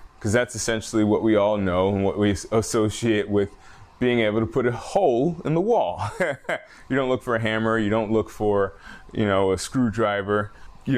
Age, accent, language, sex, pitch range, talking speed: 20-39, American, English, male, 95-115 Hz, 195 wpm